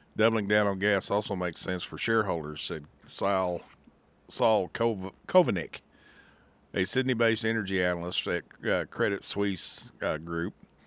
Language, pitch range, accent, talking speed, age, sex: English, 85-105 Hz, American, 110 wpm, 50-69, male